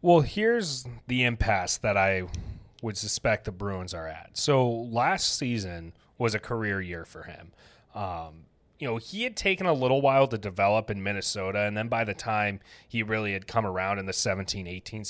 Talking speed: 185 wpm